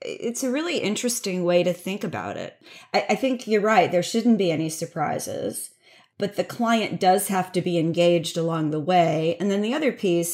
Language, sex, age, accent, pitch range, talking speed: English, female, 40-59, American, 160-185 Hz, 205 wpm